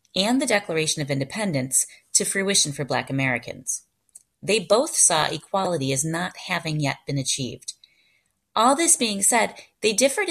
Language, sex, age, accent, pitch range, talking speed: English, female, 30-49, American, 145-195 Hz, 150 wpm